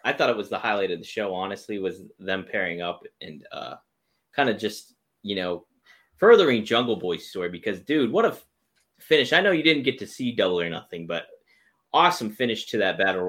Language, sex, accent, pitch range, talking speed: English, male, American, 100-150 Hz, 210 wpm